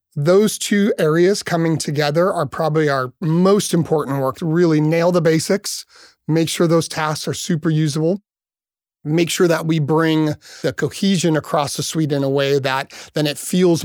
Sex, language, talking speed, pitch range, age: male, English, 170 wpm, 140-170 Hz, 30-49